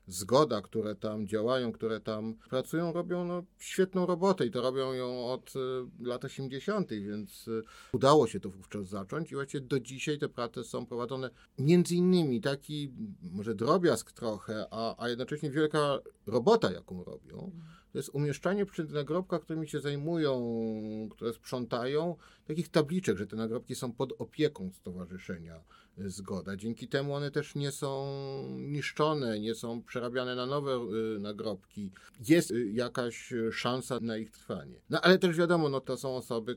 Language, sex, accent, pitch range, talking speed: Polish, male, native, 105-145 Hz, 150 wpm